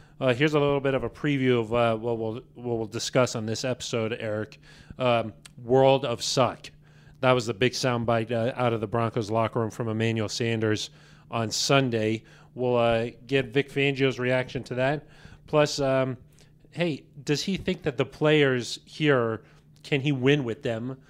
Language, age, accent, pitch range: English, 40-59, American, 115-145 Hz